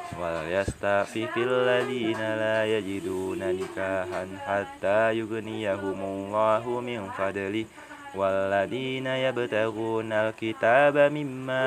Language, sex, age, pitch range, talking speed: Indonesian, male, 20-39, 100-135 Hz, 80 wpm